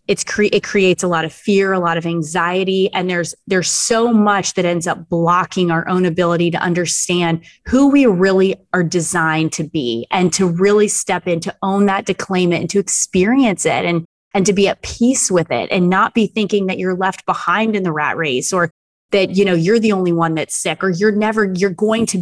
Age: 20-39